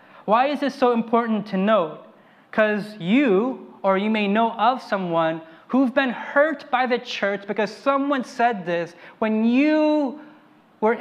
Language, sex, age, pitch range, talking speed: English, male, 20-39, 205-275 Hz, 160 wpm